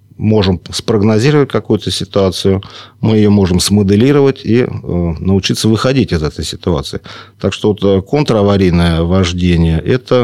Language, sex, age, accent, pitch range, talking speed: Russian, male, 40-59, native, 90-110 Hz, 115 wpm